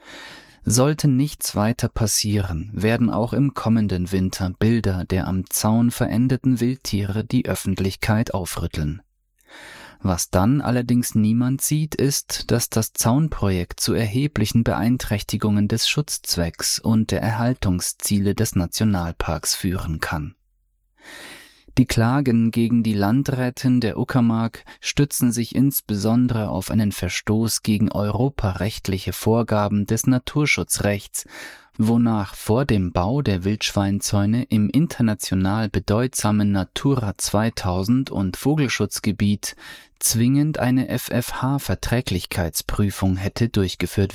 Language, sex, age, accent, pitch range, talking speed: German, male, 30-49, German, 100-125 Hz, 100 wpm